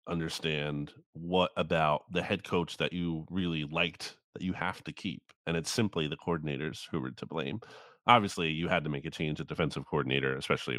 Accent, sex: American, male